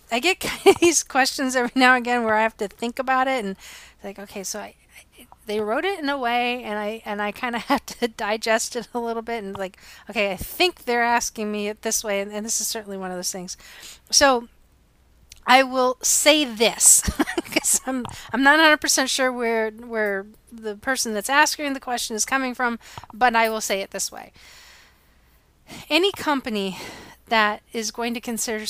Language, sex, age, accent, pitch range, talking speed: English, female, 30-49, American, 205-250 Hz, 200 wpm